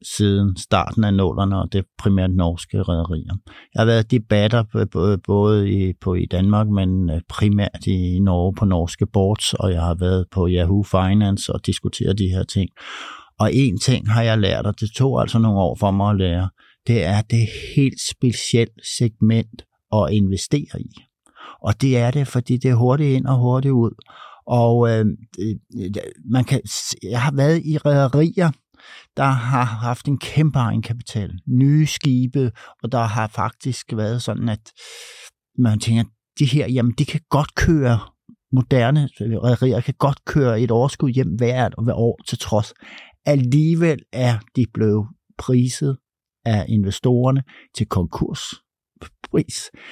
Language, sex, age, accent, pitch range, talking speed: Danish, male, 60-79, native, 105-135 Hz, 155 wpm